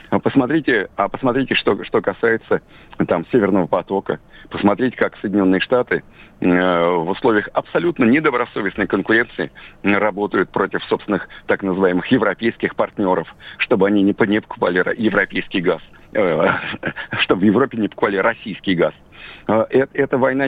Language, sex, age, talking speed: Russian, male, 50-69, 140 wpm